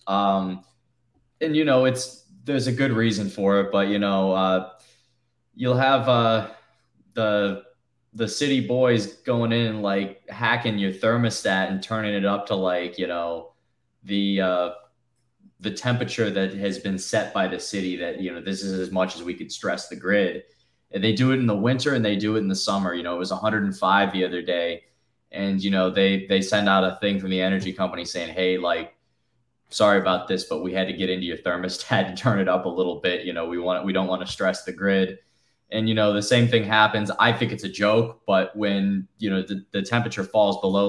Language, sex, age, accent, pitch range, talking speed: English, male, 20-39, American, 95-110 Hz, 220 wpm